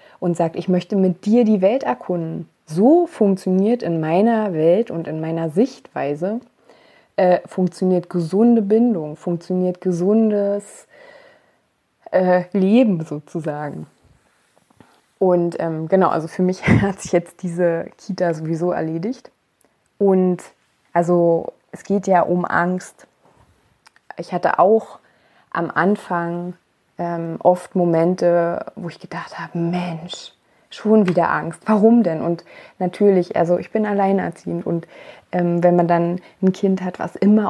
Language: German